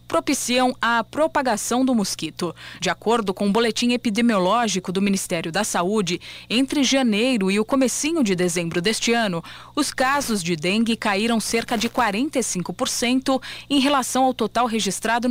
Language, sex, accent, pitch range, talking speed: Portuguese, female, Brazilian, 195-260 Hz, 150 wpm